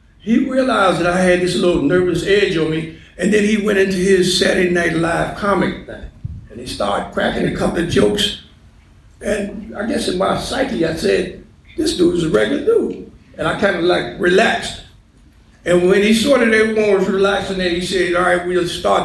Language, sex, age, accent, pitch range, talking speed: English, male, 60-79, American, 160-195 Hz, 210 wpm